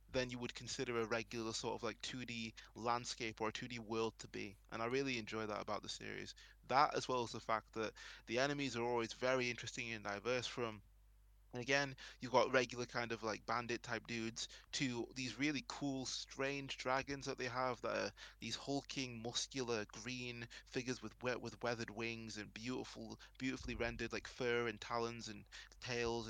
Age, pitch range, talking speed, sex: 20-39, 115-130 Hz, 185 wpm, male